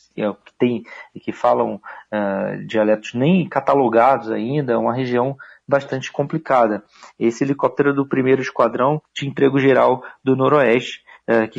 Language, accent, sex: Portuguese, Brazilian, male